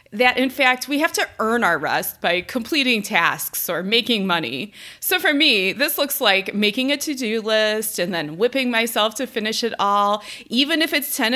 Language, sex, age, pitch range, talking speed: English, female, 20-39, 210-275 Hz, 195 wpm